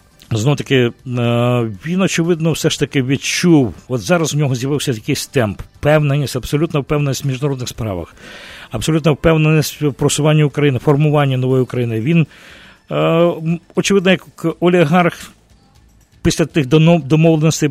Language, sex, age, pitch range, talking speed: English, male, 50-69, 120-155 Hz, 125 wpm